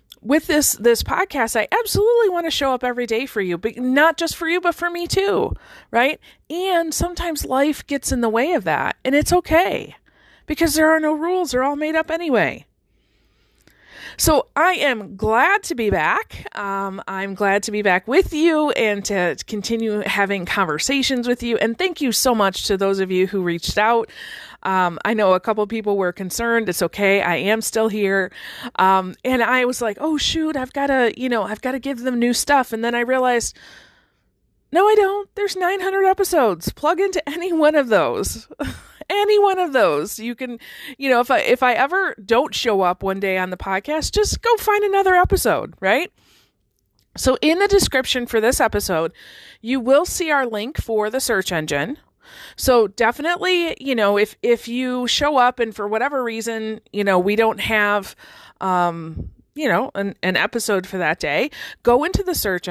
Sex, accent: female, American